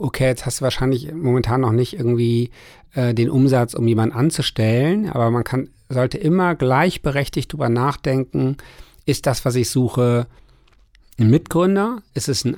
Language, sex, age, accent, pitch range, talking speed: German, male, 50-69, German, 120-150 Hz, 160 wpm